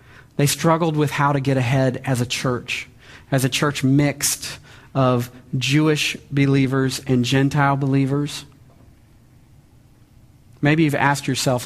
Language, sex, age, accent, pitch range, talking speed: English, male, 40-59, American, 115-140 Hz, 125 wpm